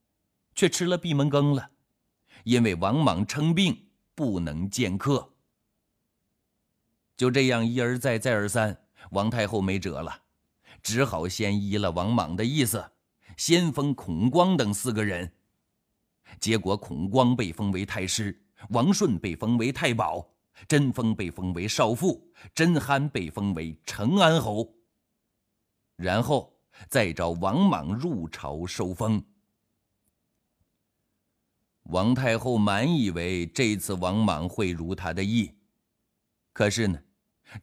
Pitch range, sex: 90-125 Hz, male